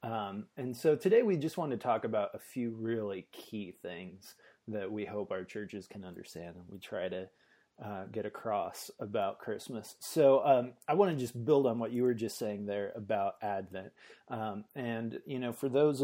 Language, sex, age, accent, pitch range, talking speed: English, male, 30-49, American, 105-130 Hz, 200 wpm